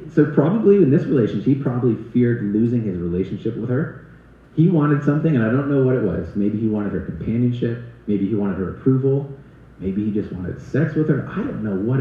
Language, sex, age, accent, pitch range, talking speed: English, male, 30-49, American, 90-130 Hz, 220 wpm